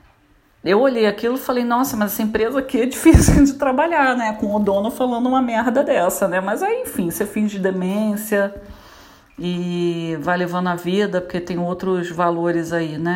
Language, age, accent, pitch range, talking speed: Portuguese, 40-59, Brazilian, 180-235 Hz, 180 wpm